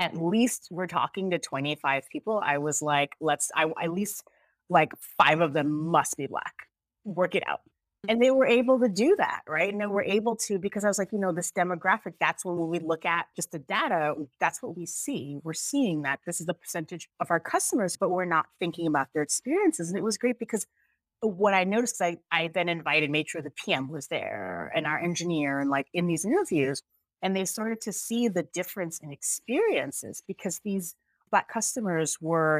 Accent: American